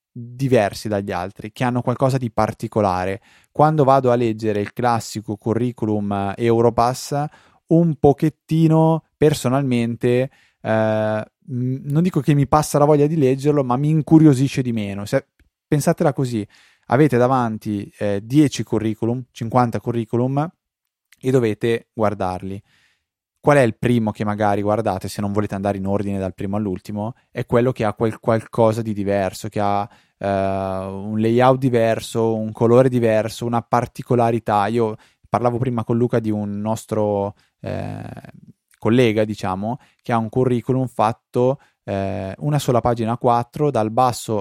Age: 20-39